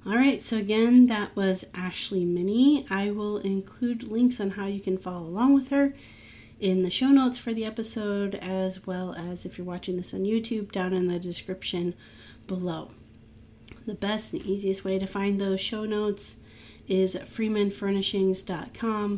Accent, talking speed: American, 165 wpm